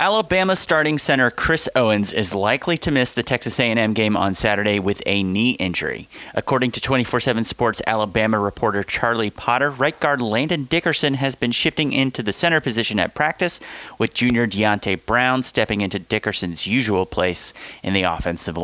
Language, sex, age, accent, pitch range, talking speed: English, male, 30-49, American, 105-130 Hz, 165 wpm